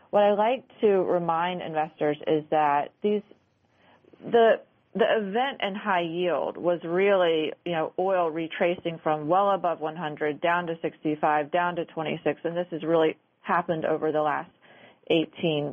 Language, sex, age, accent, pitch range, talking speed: English, female, 30-49, American, 160-185 Hz, 165 wpm